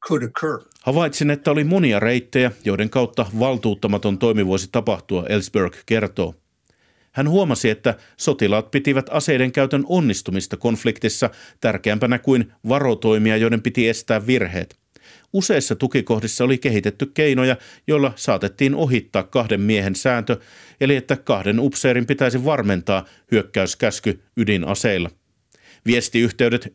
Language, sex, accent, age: Finnish, male, native, 50-69